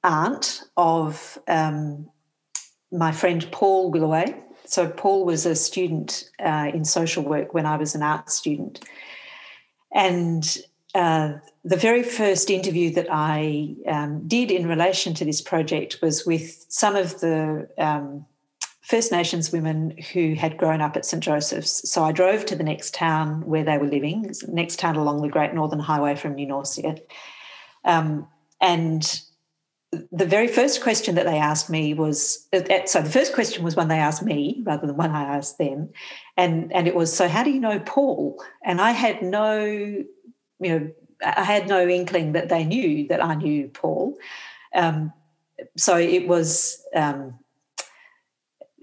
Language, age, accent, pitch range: English, 50-69, Australian, 155-185 Hz